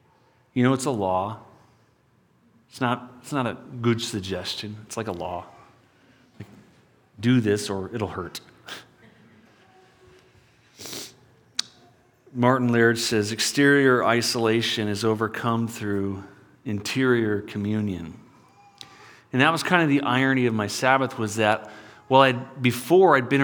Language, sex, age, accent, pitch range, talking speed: English, male, 40-59, American, 110-140 Hz, 125 wpm